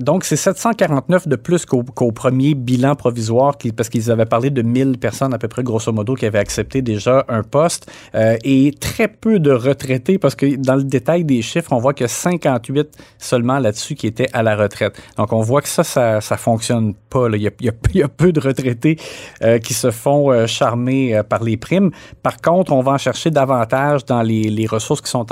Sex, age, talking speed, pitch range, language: male, 30-49, 220 wpm, 110-135 Hz, French